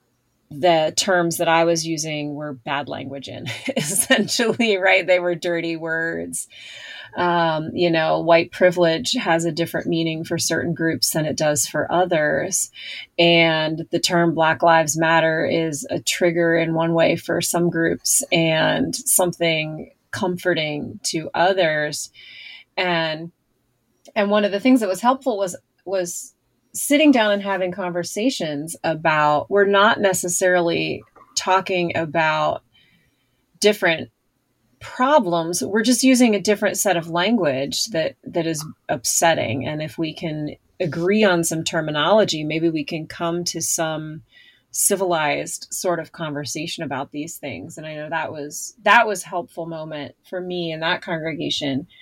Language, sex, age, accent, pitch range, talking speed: English, female, 30-49, American, 155-180 Hz, 140 wpm